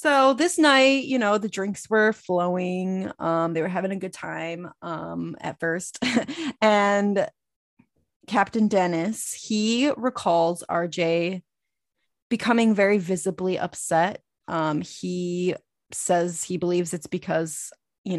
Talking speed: 120 wpm